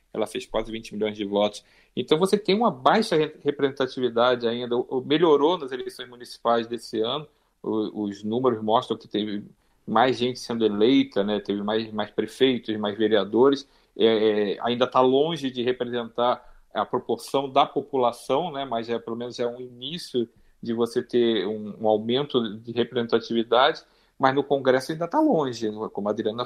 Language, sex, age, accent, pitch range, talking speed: Portuguese, male, 40-59, Brazilian, 115-140 Hz, 165 wpm